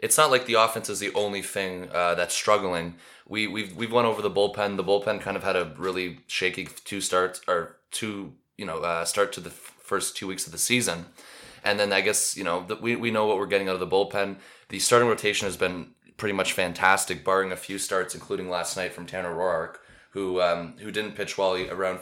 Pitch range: 90-105 Hz